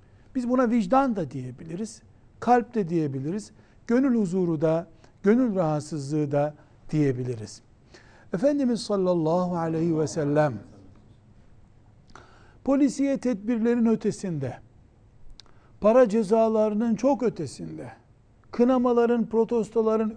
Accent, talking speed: native, 85 wpm